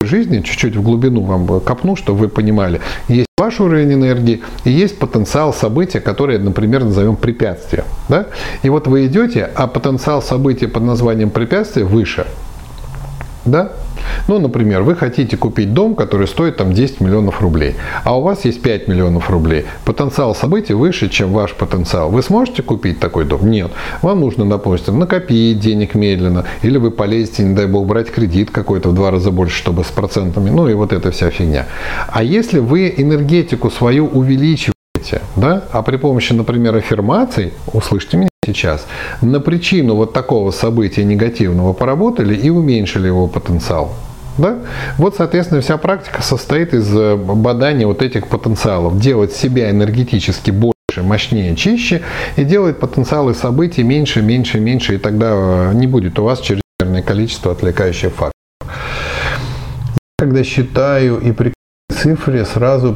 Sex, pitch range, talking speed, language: male, 100-135 Hz, 150 wpm, Russian